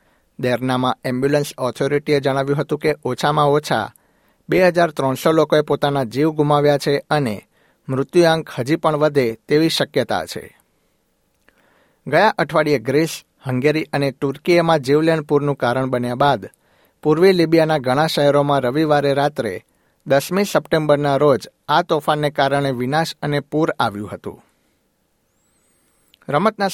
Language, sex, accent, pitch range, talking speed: Gujarati, male, native, 130-155 Hz, 115 wpm